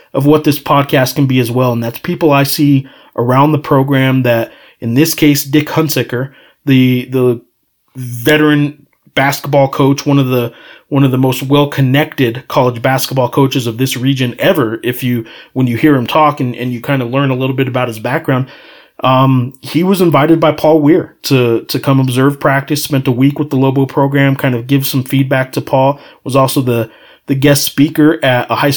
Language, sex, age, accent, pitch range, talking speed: English, male, 30-49, American, 130-150 Hz, 200 wpm